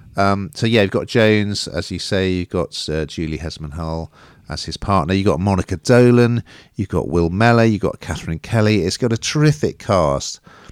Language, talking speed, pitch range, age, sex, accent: English, 190 wpm, 80-115 Hz, 50-69, male, British